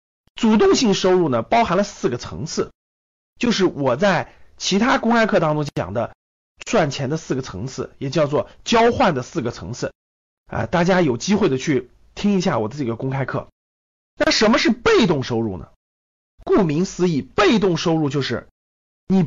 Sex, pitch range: male, 130-210 Hz